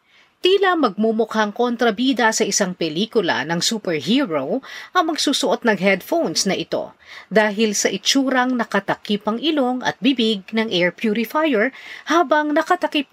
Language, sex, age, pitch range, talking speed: Filipino, female, 40-59, 205-270 Hz, 125 wpm